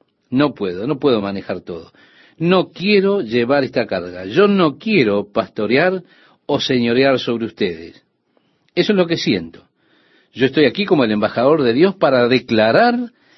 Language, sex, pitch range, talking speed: Spanish, male, 115-180 Hz, 155 wpm